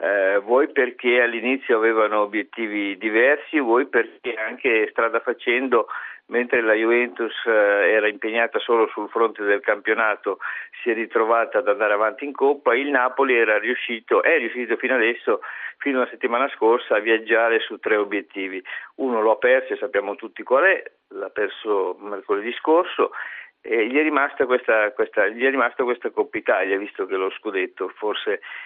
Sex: male